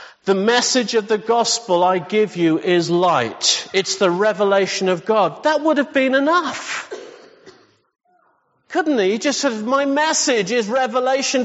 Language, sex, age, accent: English, male, 50-69, British